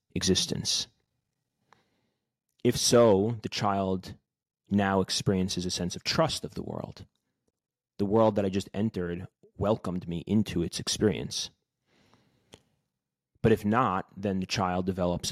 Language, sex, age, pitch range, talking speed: English, male, 30-49, 95-120 Hz, 125 wpm